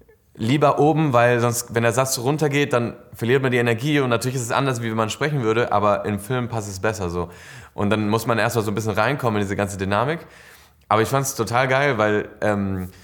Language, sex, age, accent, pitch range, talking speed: German, male, 20-39, German, 100-125 Hz, 235 wpm